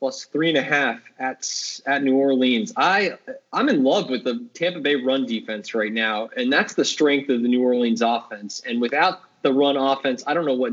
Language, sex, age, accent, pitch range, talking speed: English, male, 20-39, American, 125-185 Hz, 220 wpm